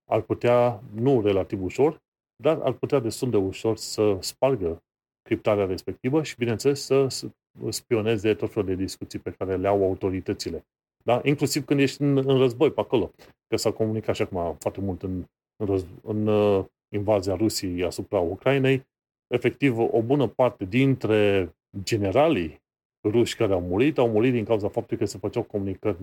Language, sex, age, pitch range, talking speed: Romanian, male, 30-49, 100-125 Hz, 160 wpm